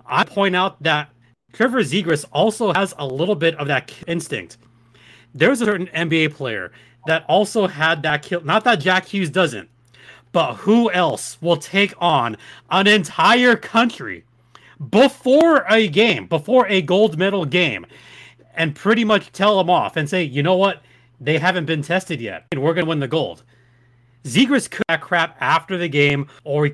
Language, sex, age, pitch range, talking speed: English, male, 30-49, 140-185 Hz, 175 wpm